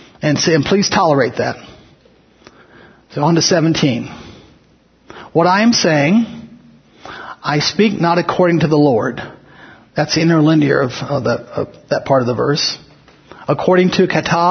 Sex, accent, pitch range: male, American, 150-180 Hz